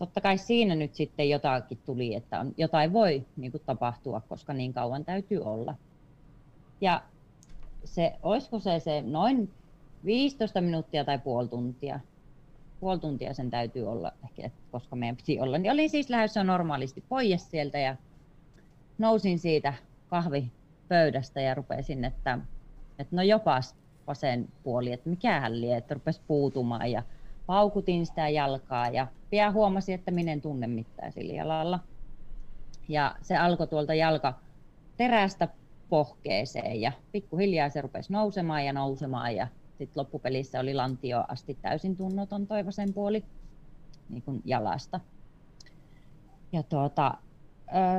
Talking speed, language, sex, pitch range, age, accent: 135 wpm, Finnish, female, 135-175 Hz, 30-49, native